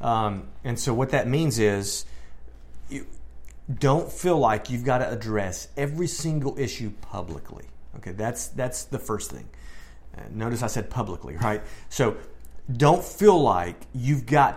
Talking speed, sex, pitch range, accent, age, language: 150 wpm, male, 100-135 Hz, American, 40-59, English